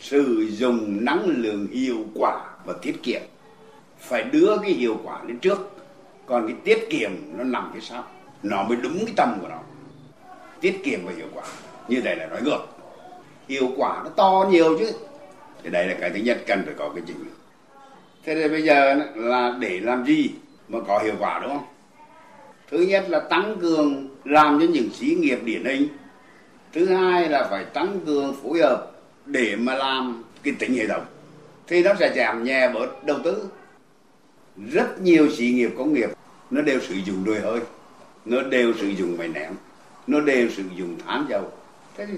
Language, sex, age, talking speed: Vietnamese, male, 60-79, 190 wpm